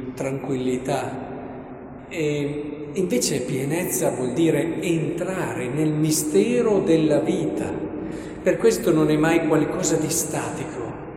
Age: 50-69